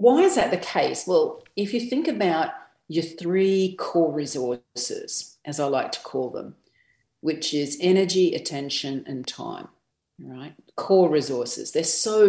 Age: 40-59